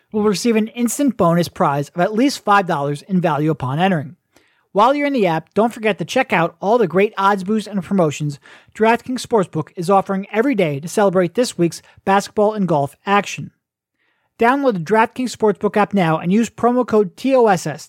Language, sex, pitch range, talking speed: English, male, 160-215 Hz, 190 wpm